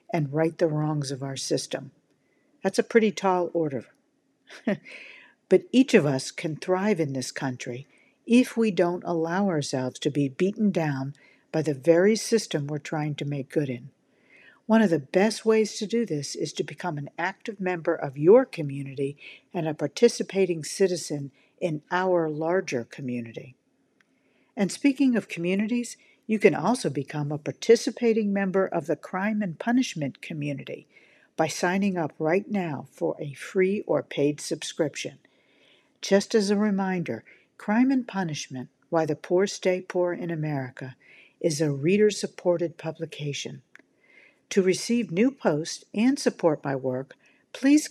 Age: 50-69